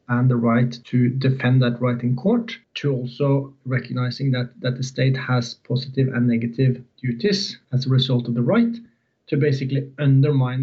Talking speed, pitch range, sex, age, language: 170 wpm, 120-135 Hz, male, 30-49, English